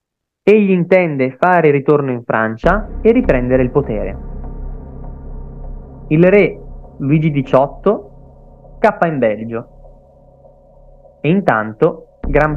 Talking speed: 100 wpm